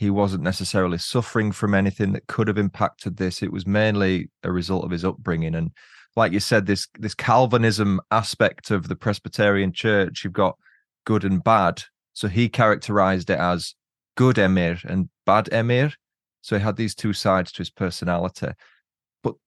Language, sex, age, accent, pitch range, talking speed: English, male, 20-39, British, 100-130 Hz, 175 wpm